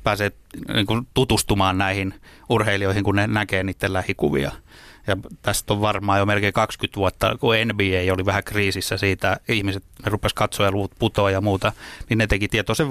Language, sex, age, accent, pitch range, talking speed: Finnish, male, 30-49, native, 100-110 Hz, 165 wpm